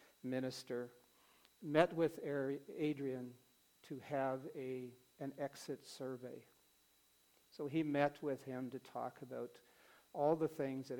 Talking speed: 120 wpm